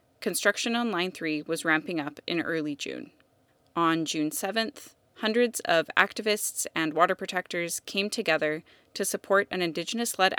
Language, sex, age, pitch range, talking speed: English, female, 20-39, 155-190 Hz, 145 wpm